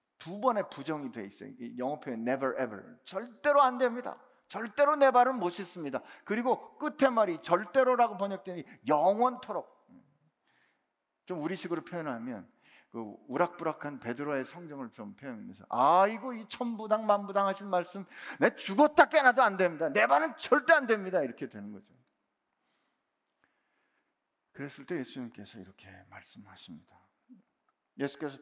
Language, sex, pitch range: Korean, male, 150-220 Hz